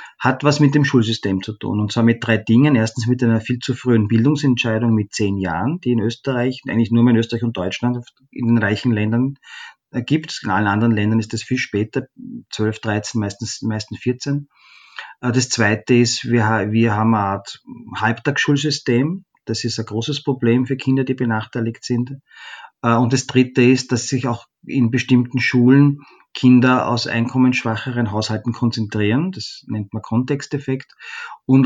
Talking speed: 165 wpm